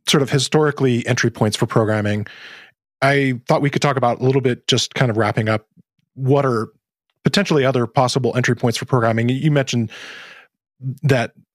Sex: male